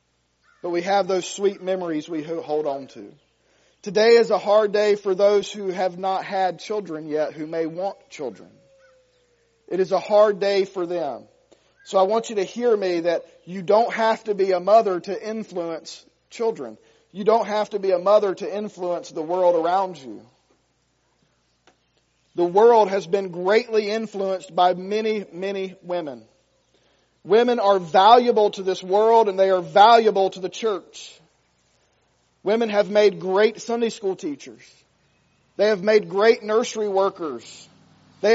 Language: English